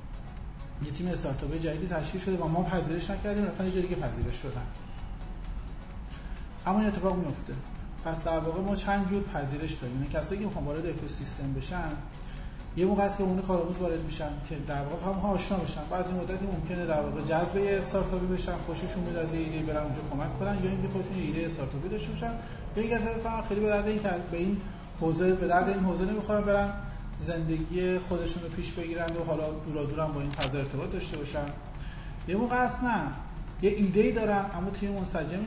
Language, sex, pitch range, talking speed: Persian, male, 150-185 Hz, 175 wpm